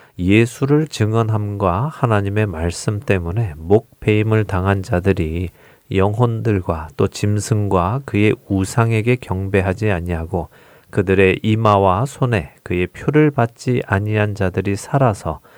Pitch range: 95-125 Hz